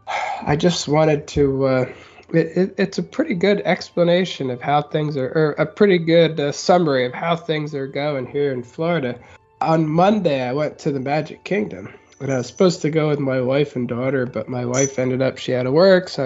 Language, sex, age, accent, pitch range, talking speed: English, male, 20-39, American, 135-170 Hz, 220 wpm